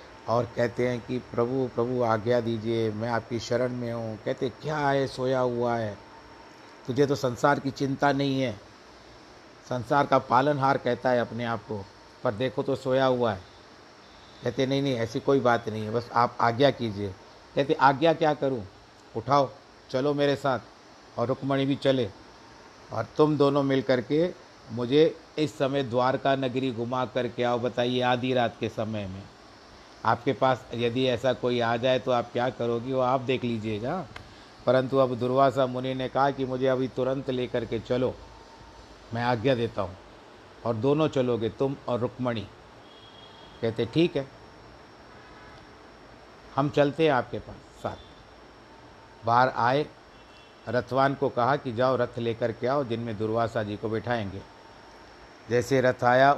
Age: 60-79